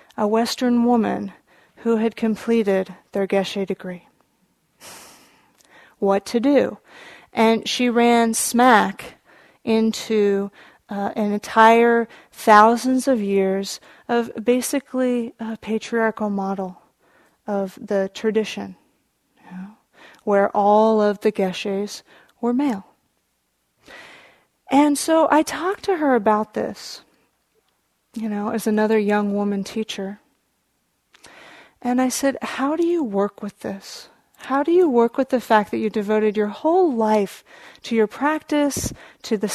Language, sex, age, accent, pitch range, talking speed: English, female, 30-49, American, 210-255 Hz, 120 wpm